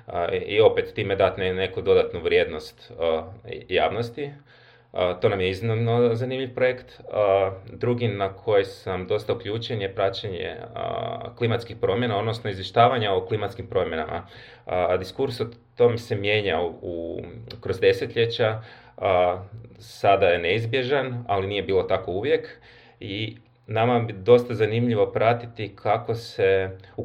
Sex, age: male, 30-49